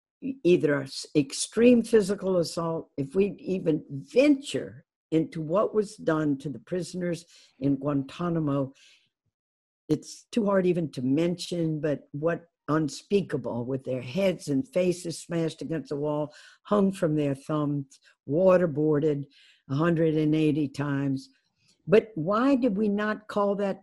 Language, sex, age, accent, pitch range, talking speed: English, female, 60-79, American, 145-190 Hz, 125 wpm